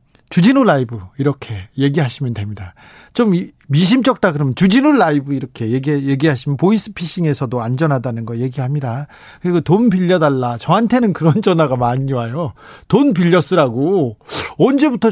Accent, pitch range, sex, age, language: native, 135-190 Hz, male, 40-59, Korean